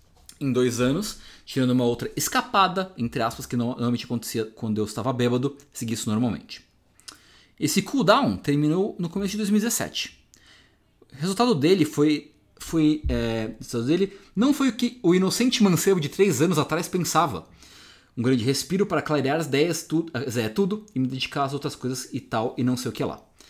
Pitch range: 115-195 Hz